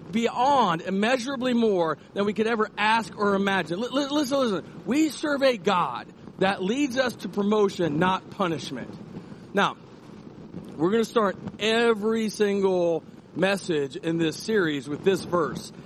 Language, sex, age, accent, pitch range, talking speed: English, male, 40-59, American, 170-220 Hz, 140 wpm